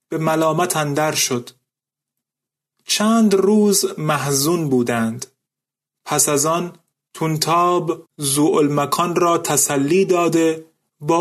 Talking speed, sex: 95 wpm, male